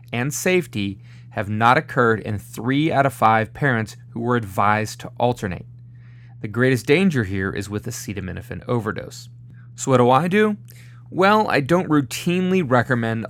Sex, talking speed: male, 155 wpm